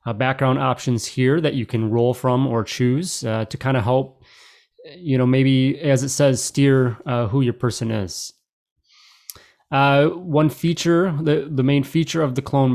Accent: American